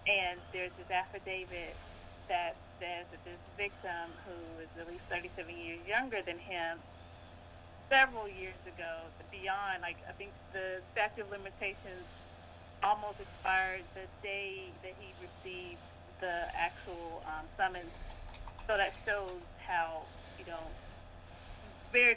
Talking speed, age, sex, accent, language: 125 wpm, 30-49, female, American, English